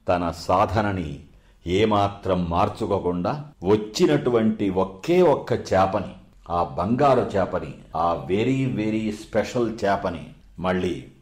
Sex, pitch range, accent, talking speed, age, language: male, 95-125 Hz, native, 90 wpm, 50-69, Telugu